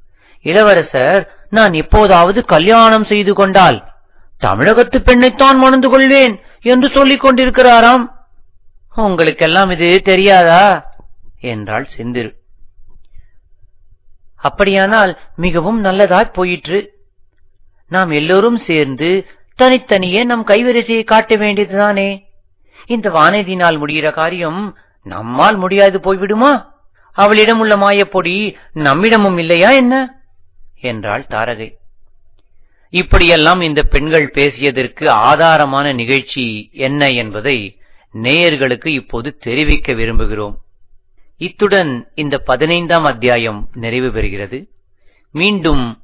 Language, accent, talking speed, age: Tamil, native, 85 wpm, 30-49